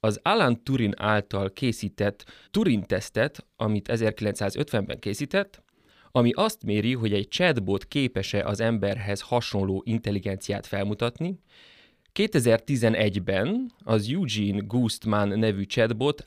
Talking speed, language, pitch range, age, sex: 105 wpm, Hungarian, 100-125 Hz, 30-49, male